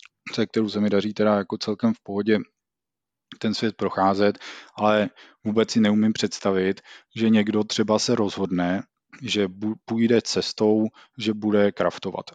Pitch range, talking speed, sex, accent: 100-115 Hz, 140 wpm, male, native